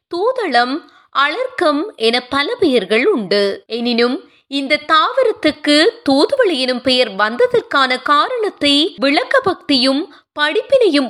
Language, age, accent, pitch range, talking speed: Tamil, 20-39, native, 230-330 Hz, 75 wpm